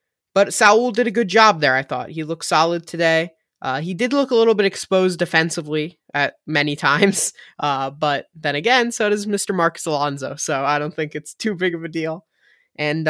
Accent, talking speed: American, 205 wpm